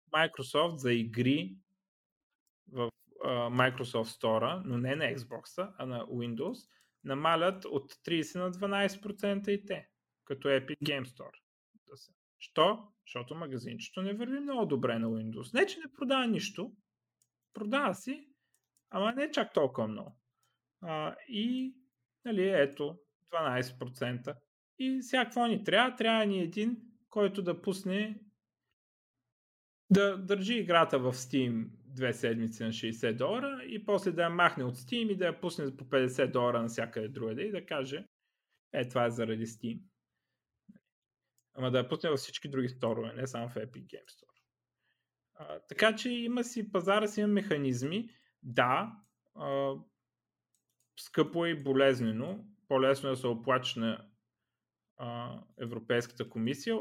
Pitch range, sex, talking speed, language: 125-205 Hz, male, 140 wpm, Bulgarian